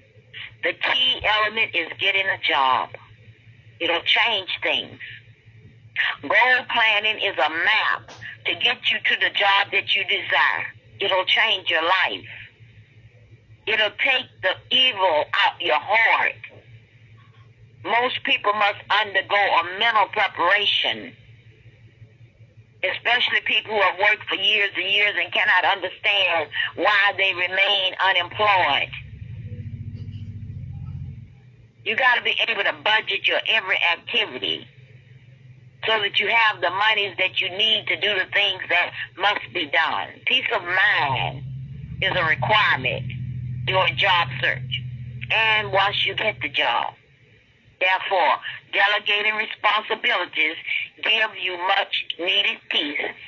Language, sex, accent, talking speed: English, female, American, 120 wpm